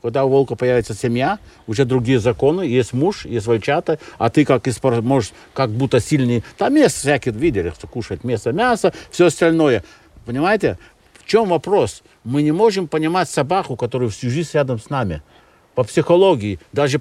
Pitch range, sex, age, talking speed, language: 130-190 Hz, male, 60-79, 170 wpm, Russian